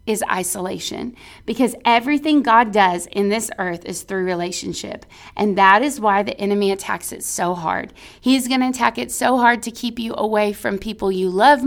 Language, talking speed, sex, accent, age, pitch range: English, 185 wpm, female, American, 30-49, 200-250 Hz